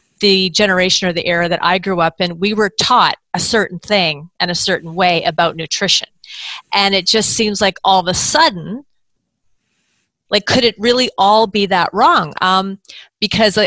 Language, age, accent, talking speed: English, 30-49, American, 180 wpm